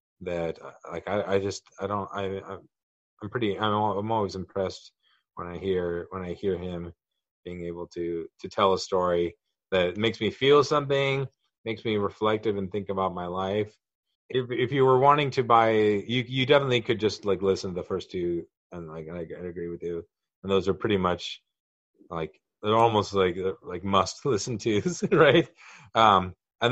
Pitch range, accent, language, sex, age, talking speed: 90-105 Hz, American, English, male, 30-49, 185 wpm